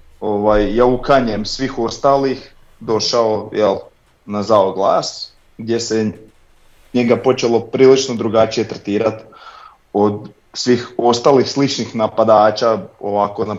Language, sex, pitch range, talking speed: Croatian, male, 105-130 Hz, 100 wpm